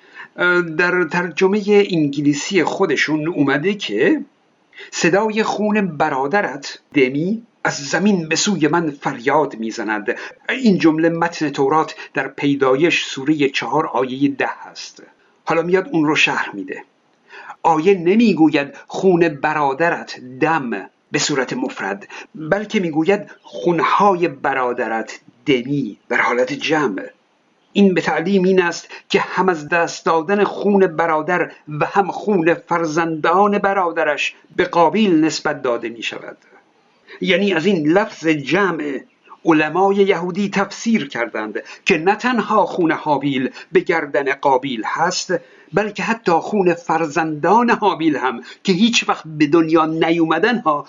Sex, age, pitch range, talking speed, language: male, 50-69, 155-200 Hz, 125 wpm, Persian